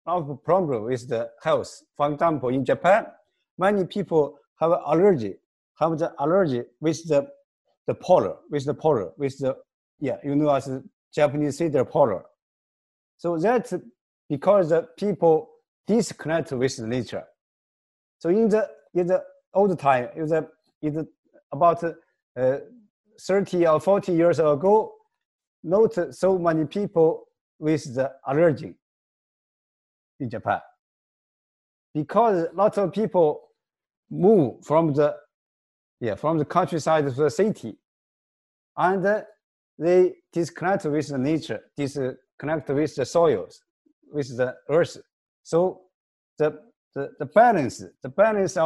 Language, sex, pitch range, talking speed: English, male, 145-190 Hz, 125 wpm